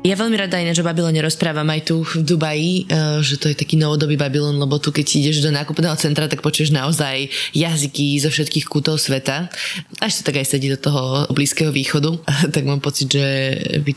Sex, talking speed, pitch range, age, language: female, 200 wpm, 145-160 Hz, 20-39, Slovak